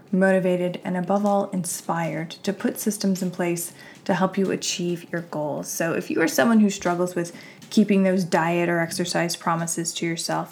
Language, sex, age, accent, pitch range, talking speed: English, female, 20-39, American, 170-200 Hz, 185 wpm